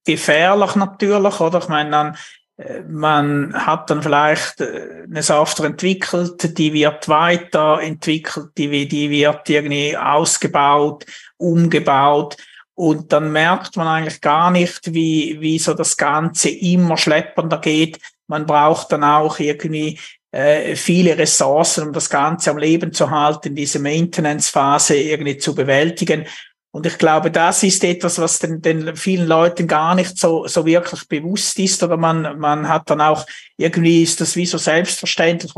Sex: male